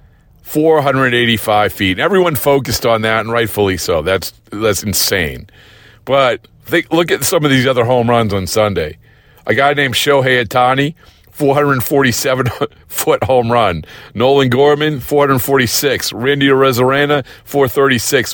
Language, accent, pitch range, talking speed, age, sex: English, American, 110-140 Hz, 150 wpm, 40-59, male